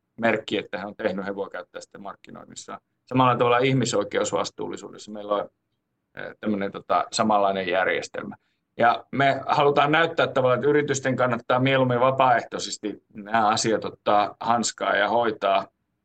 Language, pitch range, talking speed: Finnish, 110-140 Hz, 125 wpm